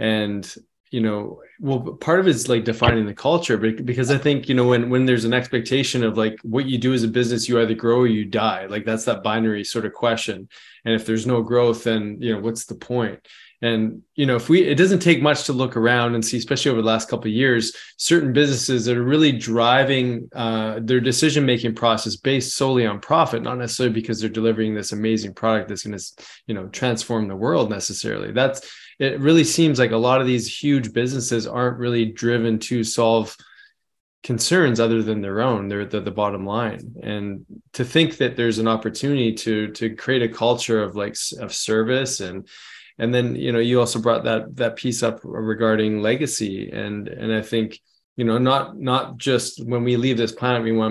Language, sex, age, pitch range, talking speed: English, male, 20-39, 110-130 Hz, 210 wpm